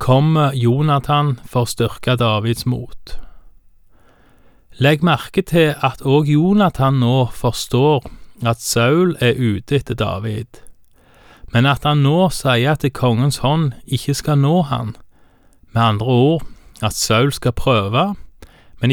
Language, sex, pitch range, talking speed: Danish, male, 115-145 Hz, 125 wpm